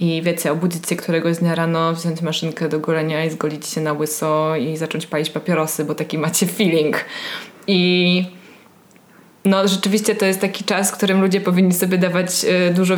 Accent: native